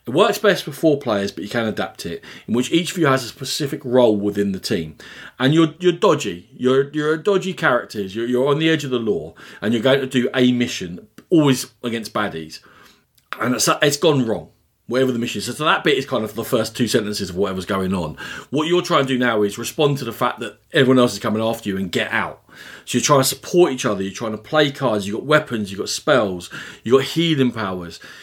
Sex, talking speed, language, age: male, 250 wpm, English, 40-59